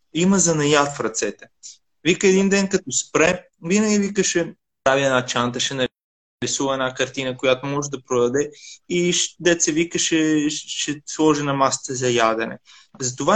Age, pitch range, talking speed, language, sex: 20-39, 135-180 Hz, 150 wpm, Bulgarian, male